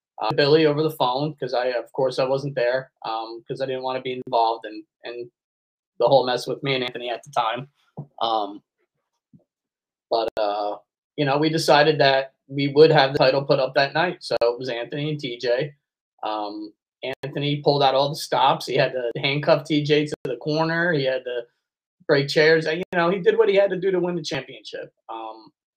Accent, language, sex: American, English, male